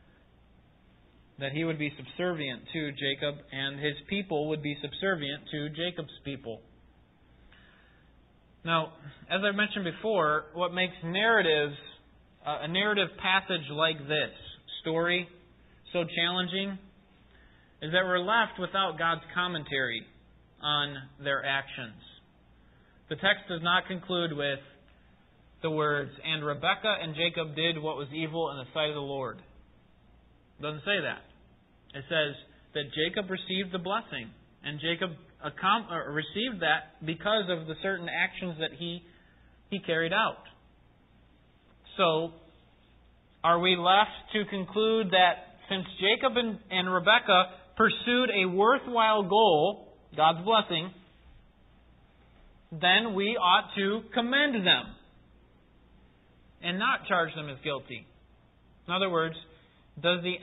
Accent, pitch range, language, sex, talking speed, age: American, 140-190 Hz, English, male, 125 wpm, 30-49